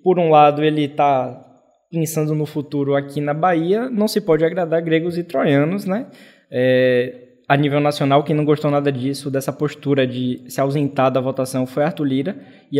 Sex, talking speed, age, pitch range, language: male, 185 wpm, 20-39, 135-165 Hz, Portuguese